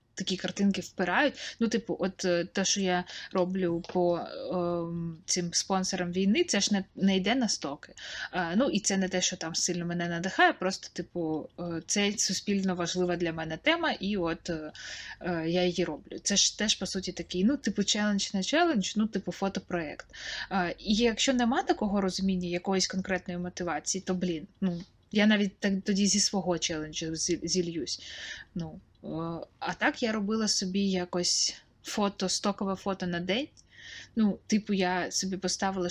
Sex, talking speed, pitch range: female, 165 wpm, 175-205 Hz